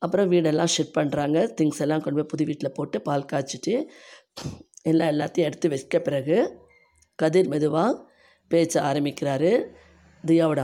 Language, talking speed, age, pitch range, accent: Tamil, 130 wpm, 20-39, 145-170 Hz, native